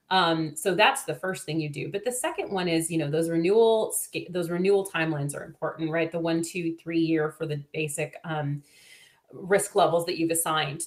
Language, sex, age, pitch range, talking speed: English, female, 30-49, 160-195 Hz, 195 wpm